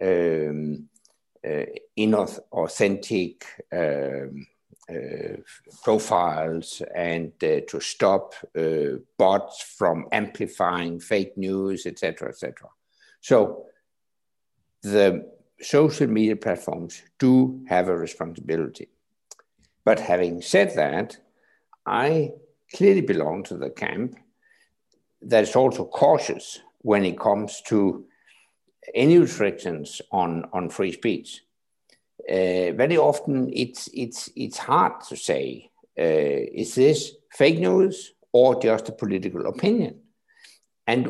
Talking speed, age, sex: 100 wpm, 60-79, male